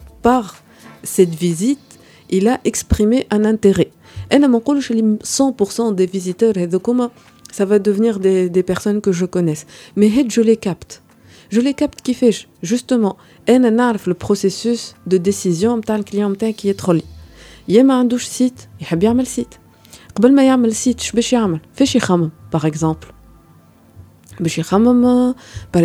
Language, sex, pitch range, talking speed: Arabic, female, 170-240 Hz, 165 wpm